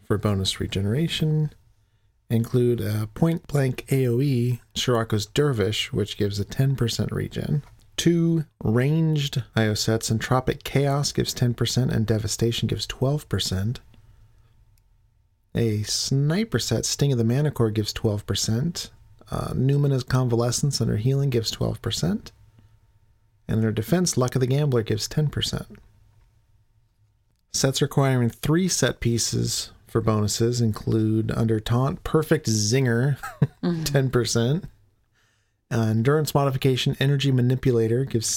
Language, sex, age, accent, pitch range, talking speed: English, male, 40-59, American, 110-130 Hz, 110 wpm